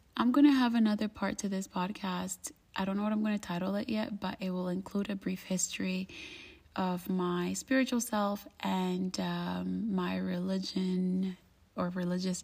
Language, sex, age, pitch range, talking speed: English, female, 30-49, 180-215 Hz, 175 wpm